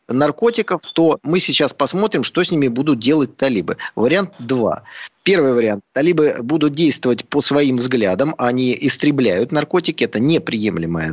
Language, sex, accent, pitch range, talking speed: Russian, male, native, 130-175 Hz, 140 wpm